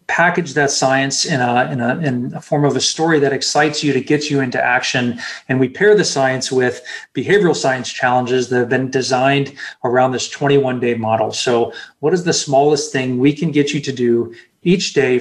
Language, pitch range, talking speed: English, 125-145 Hz, 210 wpm